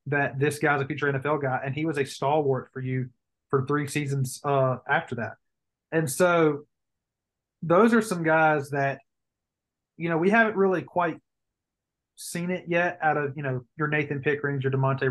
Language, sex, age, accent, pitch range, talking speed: English, male, 30-49, American, 130-160 Hz, 180 wpm